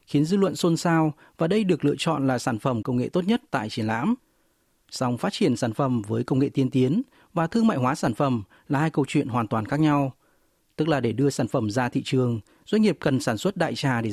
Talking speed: 260 wpm